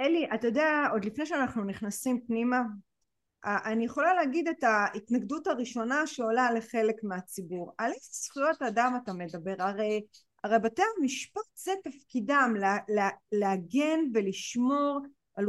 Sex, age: female, 30-49